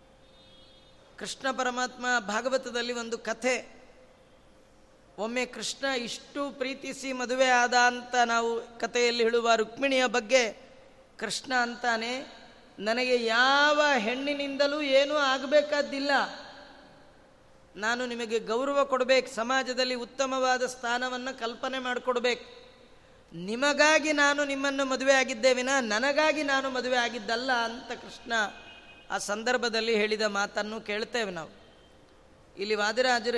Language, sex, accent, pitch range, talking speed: Kannada, female, native, 235-270 Hz, 95 wpm